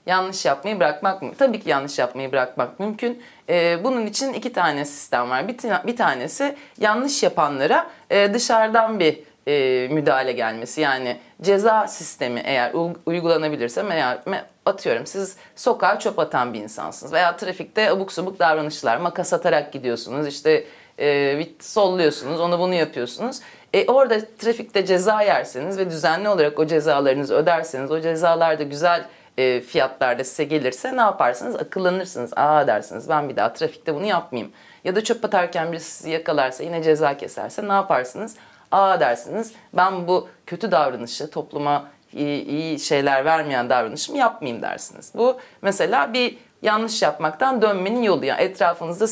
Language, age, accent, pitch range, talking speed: Turkish, 30-49, native, 145-215 Hz, 150 wpm